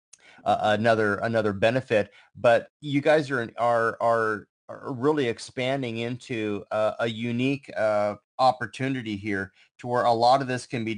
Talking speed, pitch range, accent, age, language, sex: 155 wpm, 110-135 Hz, American, 30-49, English, male